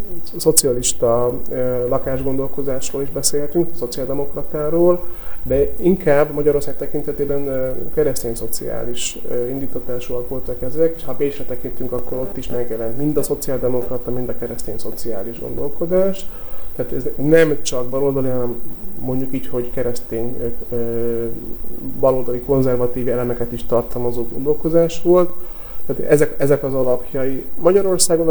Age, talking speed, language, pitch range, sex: 30-49, 115 wpm, Hungarian, 125-155 Hz, male